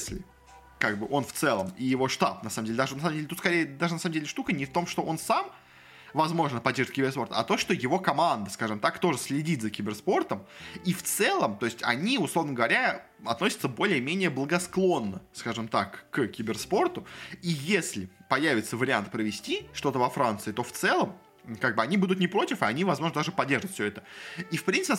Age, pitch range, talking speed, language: 20-39, 115-175 Hz, 210 wpm, Russian